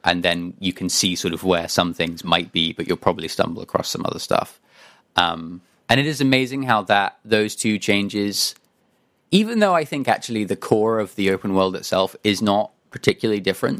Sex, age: male, 20-39